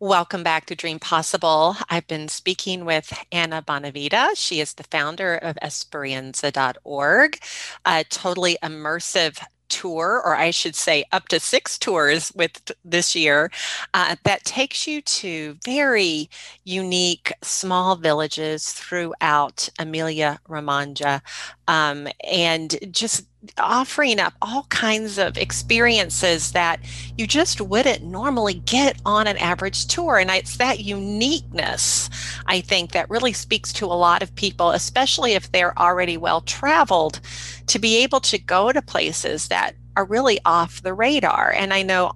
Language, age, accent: English, 40-59, American